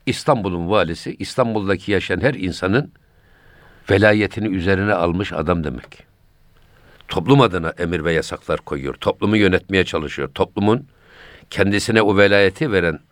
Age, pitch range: 60-79, 85-110 Hz